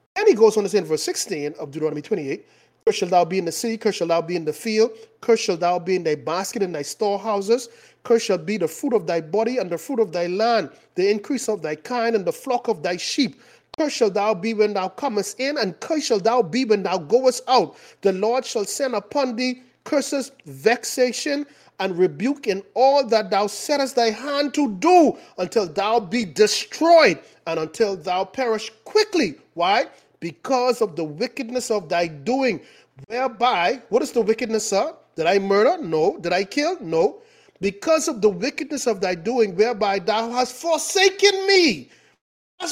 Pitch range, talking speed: 210-295 Hz, 200 wpm